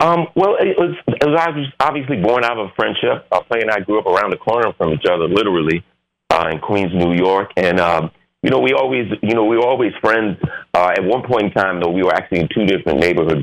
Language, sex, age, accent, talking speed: English, male, 30-49, American, 250 wpm